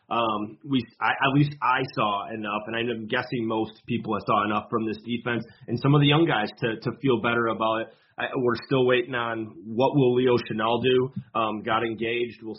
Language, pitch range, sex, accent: English, 110-125 Hz, male, American